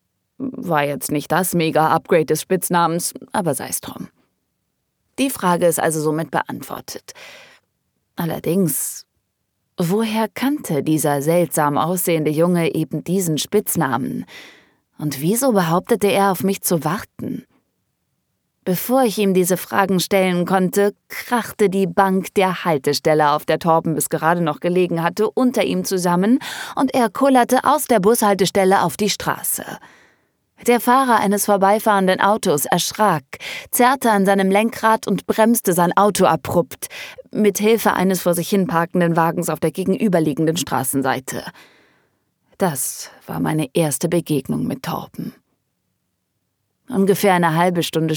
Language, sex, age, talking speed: German, female, 20-39, 130 wpm